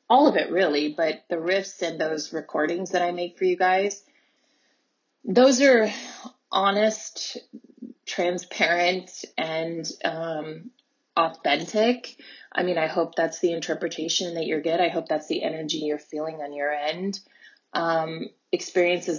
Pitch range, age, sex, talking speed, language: 165-195 Hz, 20-39, female, 140 wpm, English